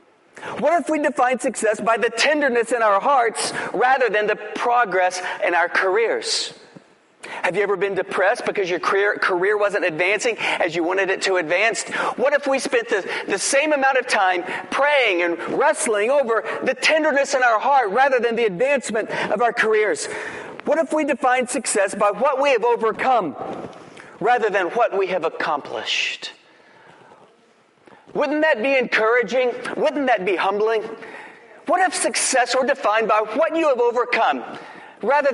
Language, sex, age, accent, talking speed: English, male, 40-59, American, 165 wpm